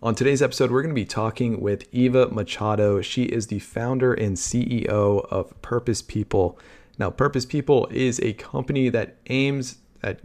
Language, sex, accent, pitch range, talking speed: English, male, American, 105-125 Hz, 170 wpm